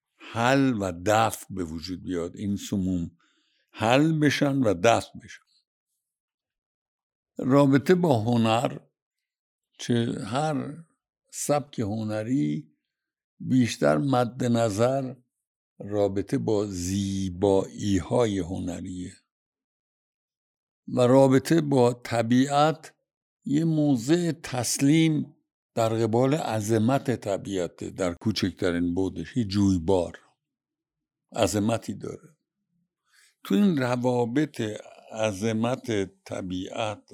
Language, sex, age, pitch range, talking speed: Persian, male, 60-79, 100-140 Hz, 80 wpm